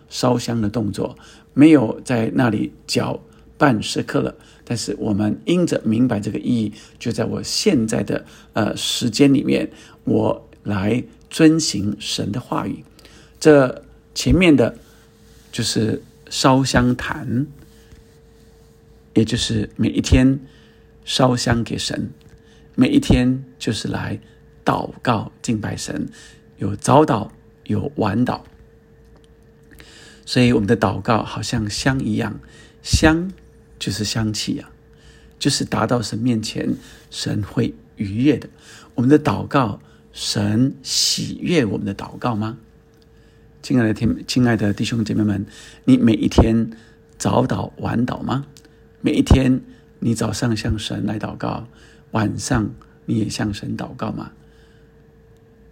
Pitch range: 105-130 Hz